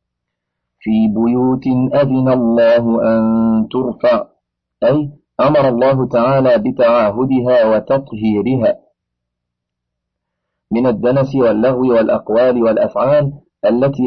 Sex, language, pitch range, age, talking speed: male, Arabic, 115-135 Hz, 40-59, 75 wpm